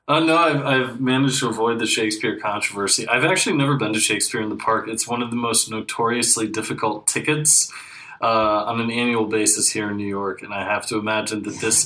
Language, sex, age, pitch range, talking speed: English, male, 20-39, 105-120 Hz, 220 wpm